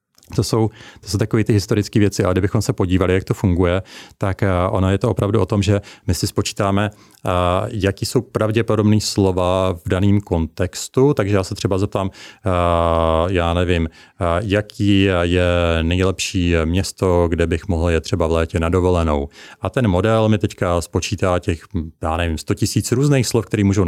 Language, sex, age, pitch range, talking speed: Czech, male, 30-49, 90-110 Hz, 180 wpm